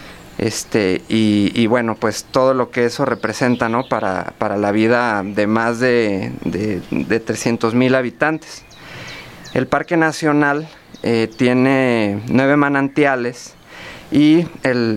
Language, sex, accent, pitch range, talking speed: Spanish, male, Mexican, 115-140 Hz, 130 wpm